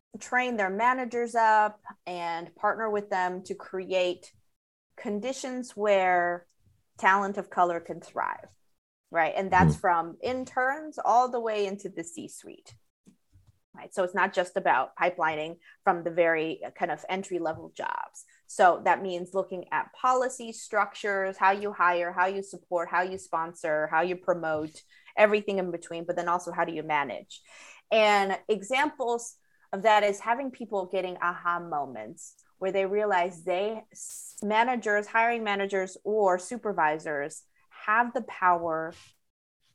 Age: 30-49